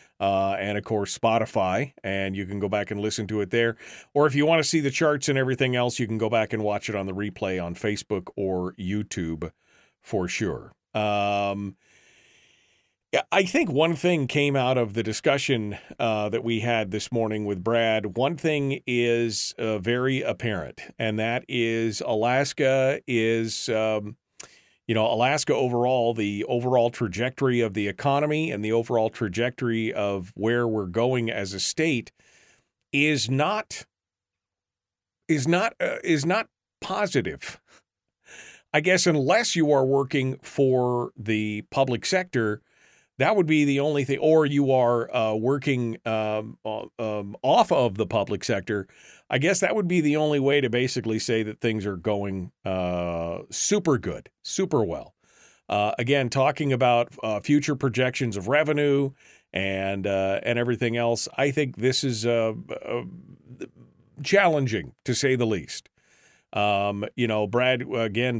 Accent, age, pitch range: American, 40-59, 105-135 Hz